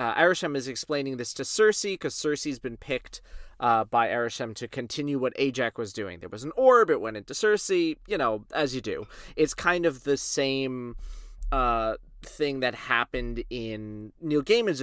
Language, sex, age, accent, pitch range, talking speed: English, male, 30-49, American, 115-150 Hz, 180 wpm